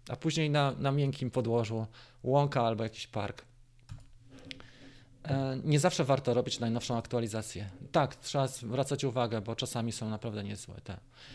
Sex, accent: male, native